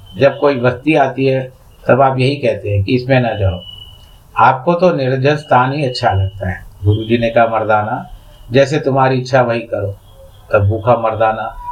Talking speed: 170 wpm